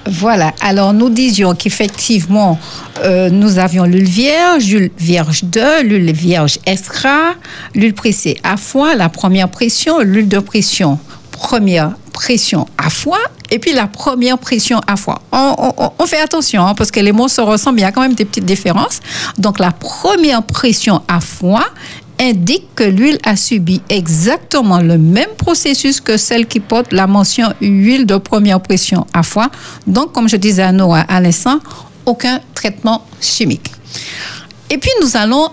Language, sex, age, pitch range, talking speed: French, female, 60-79, 185-255 Hz, 170 wpm